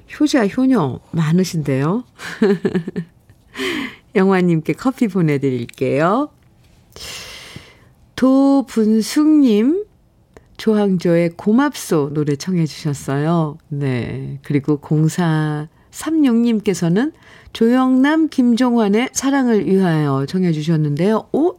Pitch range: 160-230 Hz